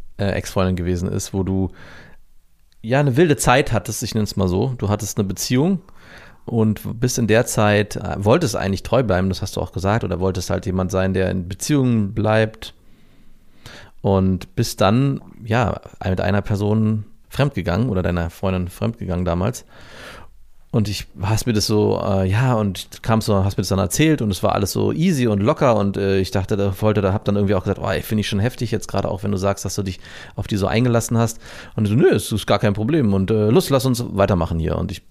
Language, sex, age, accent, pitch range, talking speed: German, male, 30-49, German, 95-115 Hz, 225 wpm